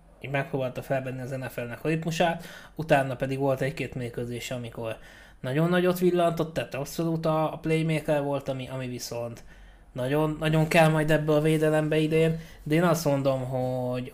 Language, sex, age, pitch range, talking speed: Hungarian, male, 20-39, 125-155 Hz, 150 wpm